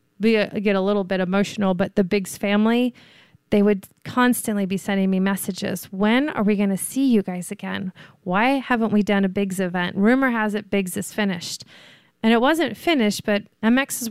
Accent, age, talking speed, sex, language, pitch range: American, 30-49, 190 wpm, female, English, 195-230 Hz